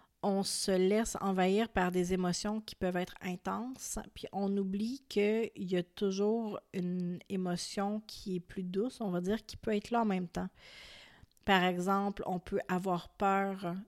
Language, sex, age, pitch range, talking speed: French, female, 30-49, 180-205 Hz, 175 wpm